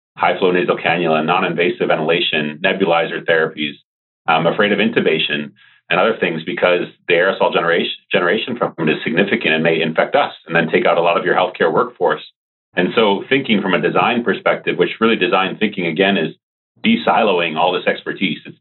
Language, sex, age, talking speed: English, male, 40-59, 170 wpm